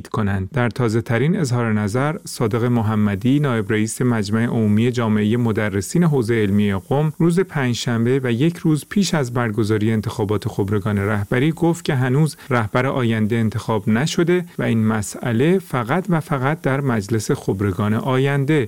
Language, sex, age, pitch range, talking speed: Persian, male, 40-59, 110-145 Hz, 145 wpm